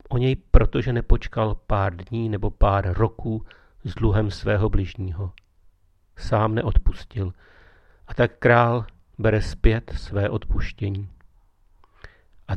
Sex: male